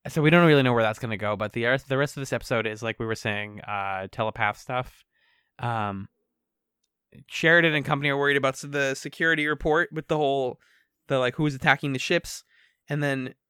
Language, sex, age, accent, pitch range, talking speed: English, male, 20-39, American, 125-155 Hz, 205 wpm